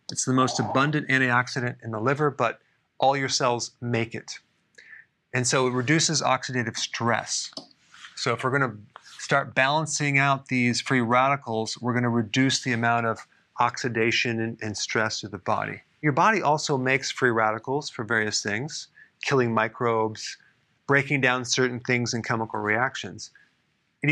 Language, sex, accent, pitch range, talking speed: English, male, American, 115-140 Hz, 155 wpm